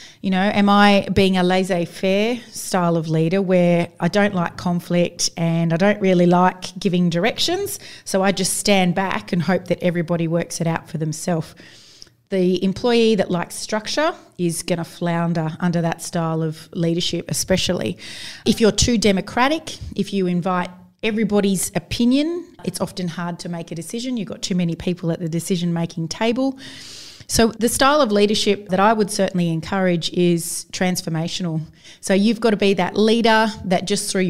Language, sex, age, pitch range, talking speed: English, female, 30-49, 170-205 Hz, 170 wpm